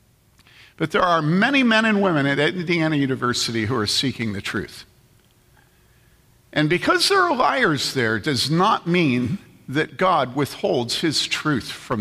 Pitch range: 125-190 Hz